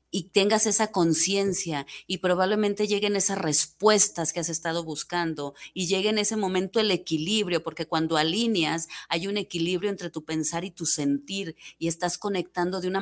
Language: Spanish